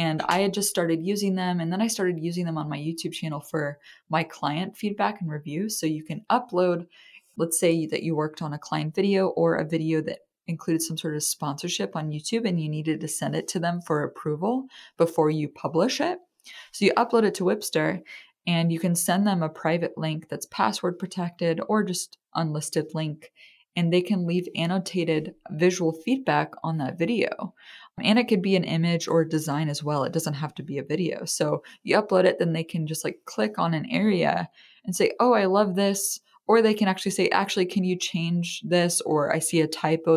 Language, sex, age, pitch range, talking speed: English, female, 20-39, 160-190 Hz, 215 wpm